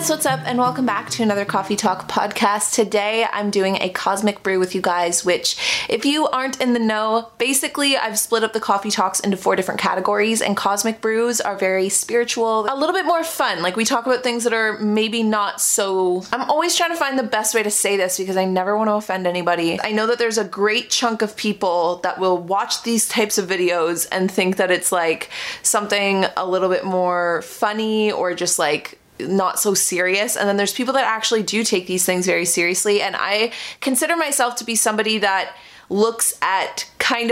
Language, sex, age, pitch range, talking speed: English, female, 20-39, 185-235 Hz, 210 wpm